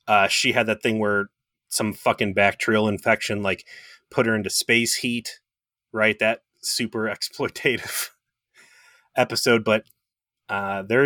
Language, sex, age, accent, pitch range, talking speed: English, male, 30-49, American, 100-120 Hz, 130 wpm